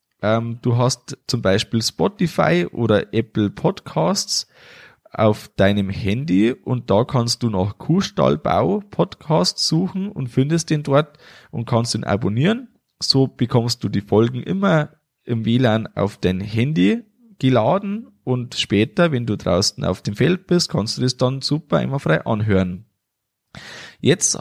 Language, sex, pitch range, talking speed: German, male, 115-180 Hz, 140 wpm